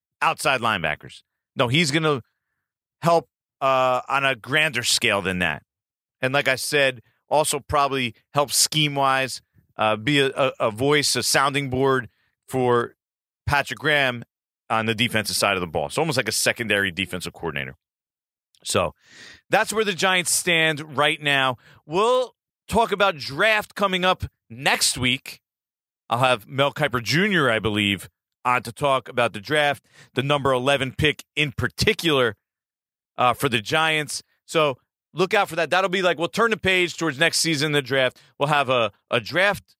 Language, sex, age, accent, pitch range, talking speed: English, male, 40-59, American, 125-180 Hz, 165 wpm